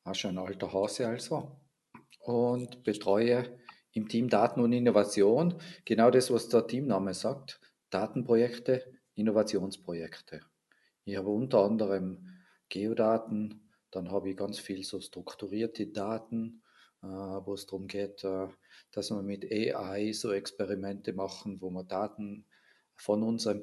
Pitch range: 100-115 Hz